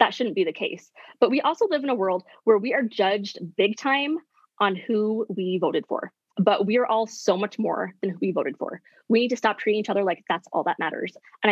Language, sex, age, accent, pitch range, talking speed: English, female, 20-39, American, 185-235 Hz, 250 wpm